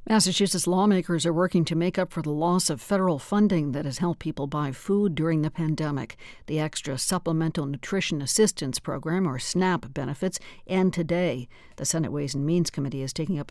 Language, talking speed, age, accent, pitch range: English, 185 wpm, 60-79, American, 145-180 Hz